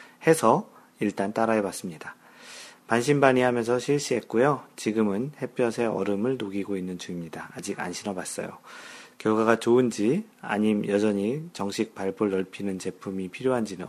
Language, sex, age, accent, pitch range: Korean, male, 40-59, native, 100-125 Hz